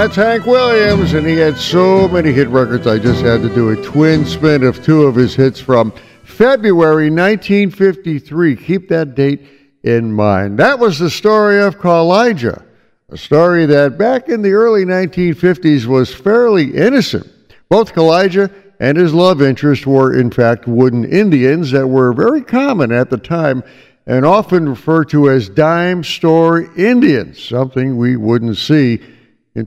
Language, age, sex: English, 60-79, male